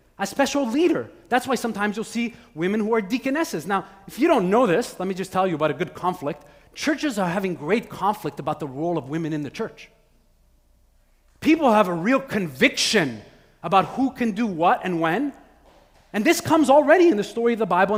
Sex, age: male, 30-49